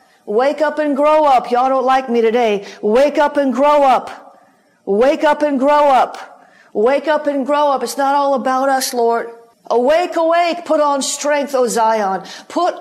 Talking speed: 185 wpm